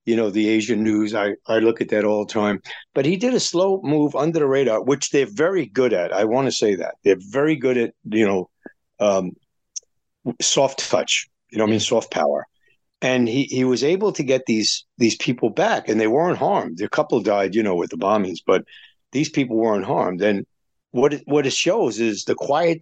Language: English